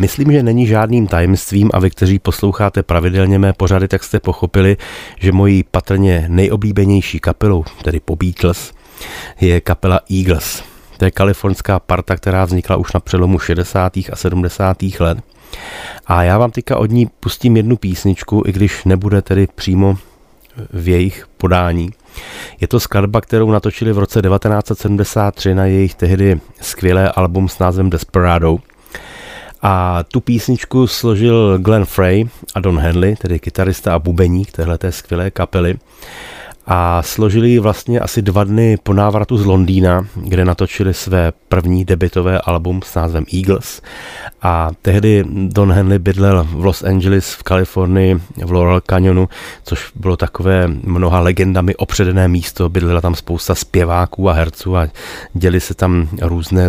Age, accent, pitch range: 30-49, native, 90-100 Hz